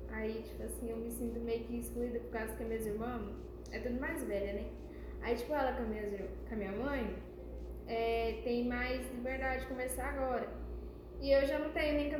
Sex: female